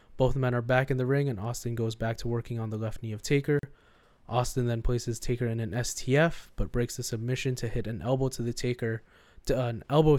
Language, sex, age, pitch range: English, male, 20-39, 115-130 Hz